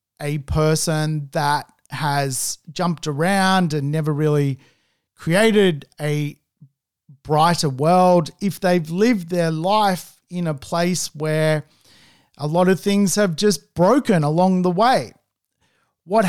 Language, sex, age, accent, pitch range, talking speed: English, male, 40-59, Australian, 150-190 Hz, 120 wpm